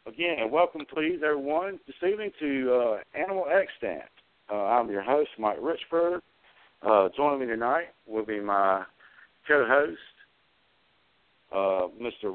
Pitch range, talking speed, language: 130-195 Hz, 115 wpm, English